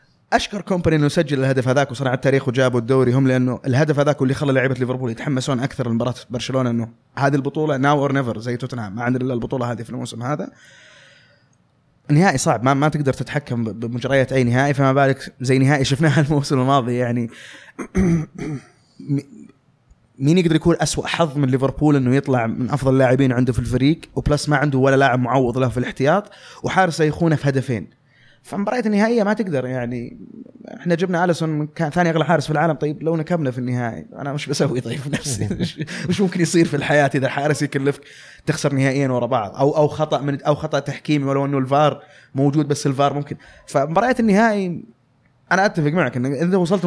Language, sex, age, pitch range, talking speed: Arabic, male, 20-39, 130-165 Hz, 180 wpm